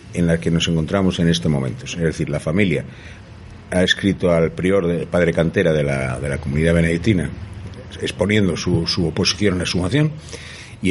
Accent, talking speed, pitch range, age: Spanish, 180 wpm, 85-110 Hz, 60-79